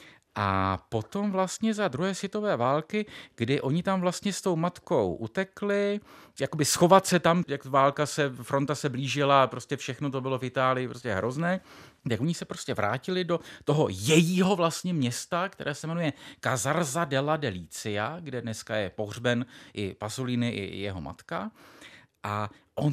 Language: Czech